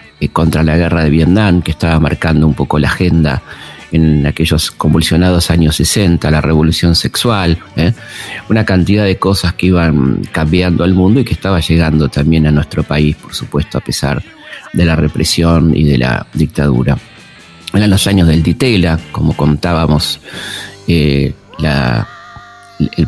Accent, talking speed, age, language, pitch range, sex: Argentinian, 150 wpm, 40-59, Spanish, 80-90 Hz, male